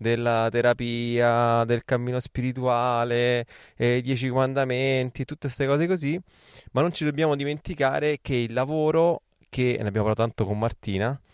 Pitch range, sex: 110-135 Hz, male